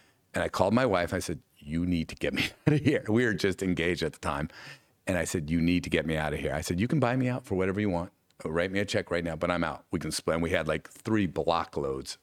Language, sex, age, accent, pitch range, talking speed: English, male, 50-69, American, 85-110 Hz, 315 wpm